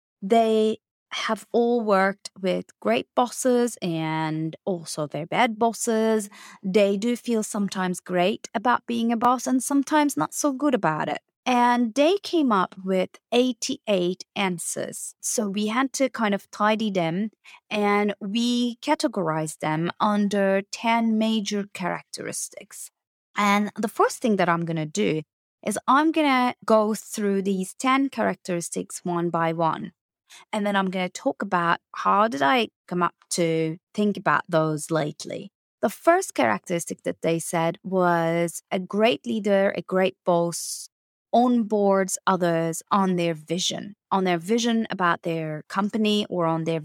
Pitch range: 175-225 Hz